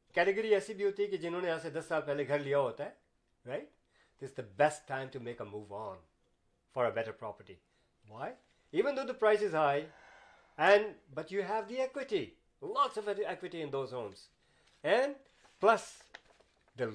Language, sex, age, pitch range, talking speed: Urdu, male, 50-69, 130-205 Hz, 130 wpm